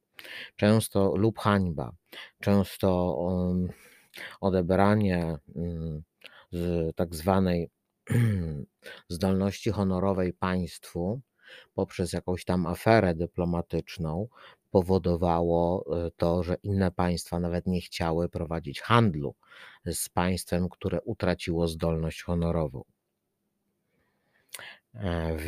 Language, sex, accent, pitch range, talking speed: Polish, male, native, 85-100 Hz, 80 wpm